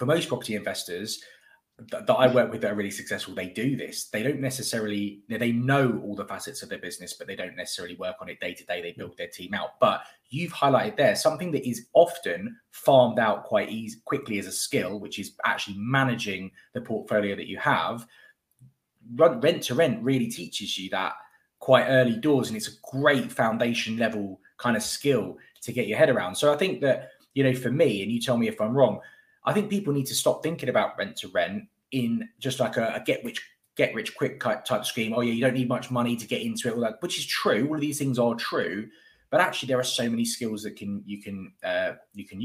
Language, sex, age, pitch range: English, male, 20-39, 110-140 Hz